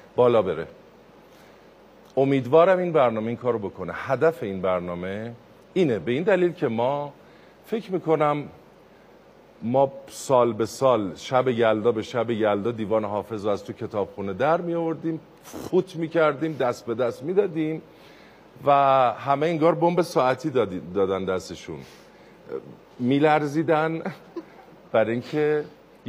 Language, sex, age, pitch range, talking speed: Persian, male, 50-69, 115-195 Hz, 125 wpm